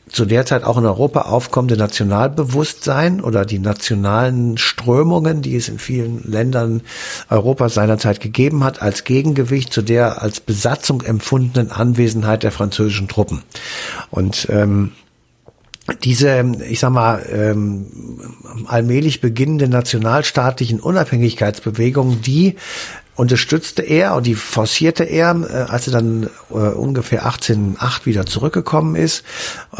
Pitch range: 110-135 Hz